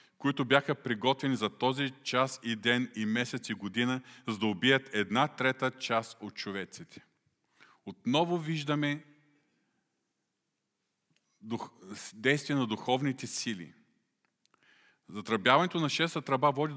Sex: male